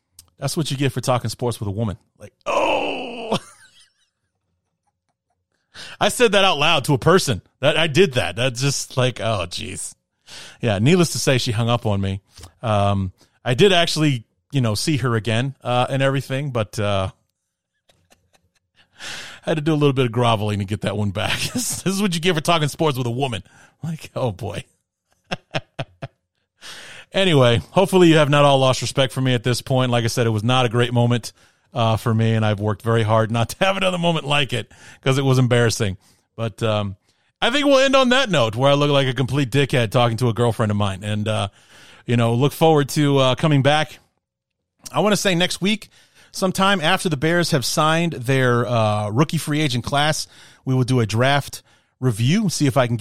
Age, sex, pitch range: 30-49, male, 115-145 Hz